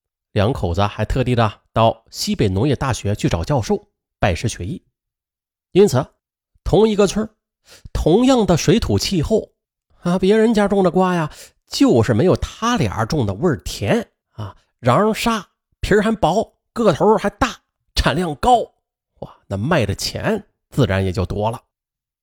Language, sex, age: Chinese, male, 30-49